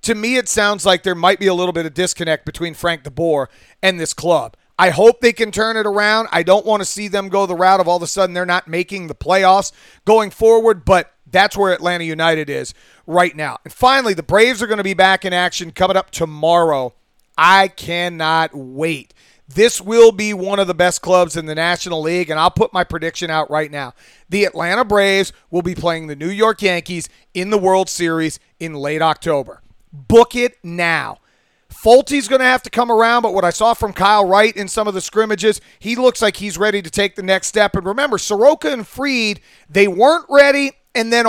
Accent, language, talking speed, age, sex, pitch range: American, English, 220 wpm, 30-49, male, 170-215 Hz